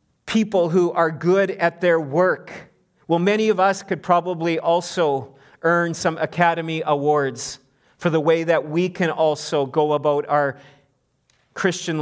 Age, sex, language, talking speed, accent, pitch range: 40-59, male, English, 145 wpm, American, 150-180 Hz